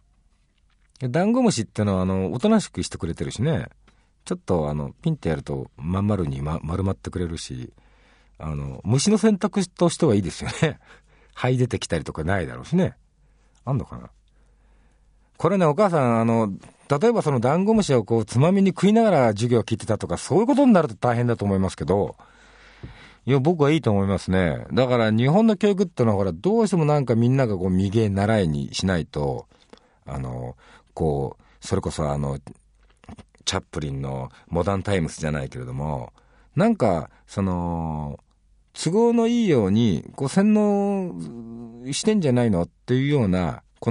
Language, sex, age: Japanese, male, 50-69